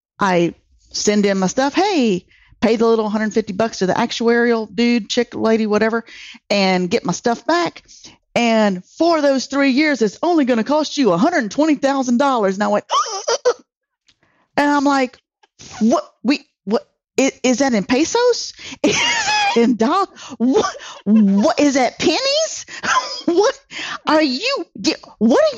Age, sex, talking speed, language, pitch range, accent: 40-59, female, 145 wpm, English, 215-290 Hz, American